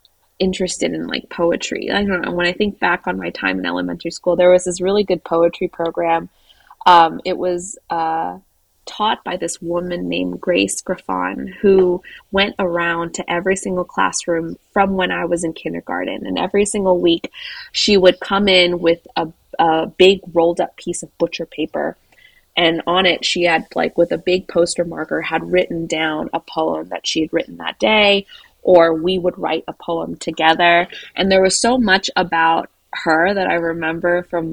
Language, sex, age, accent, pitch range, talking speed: English, female, 20-39, American, 165-180 Hz, 180 wpm